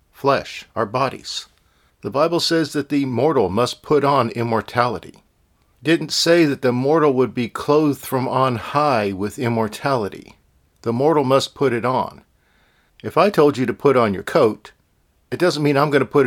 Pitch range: 100-135 Hz